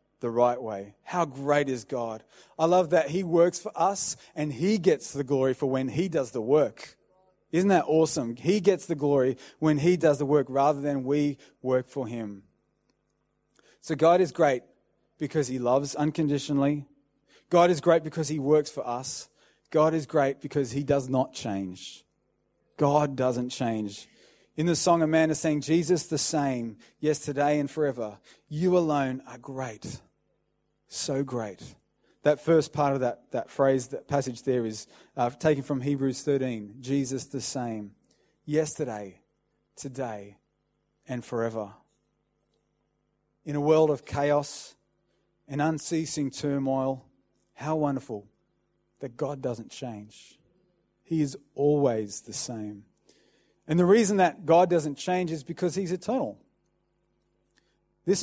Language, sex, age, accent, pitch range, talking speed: English, male, 20-39, Australian, 125-160 Hz, 145 wpm